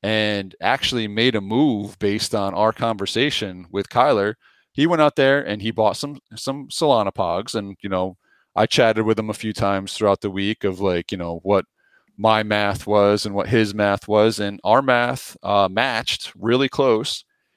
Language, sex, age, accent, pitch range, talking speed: English, male, 30-49, American, 100-125 Hz, 190 wpm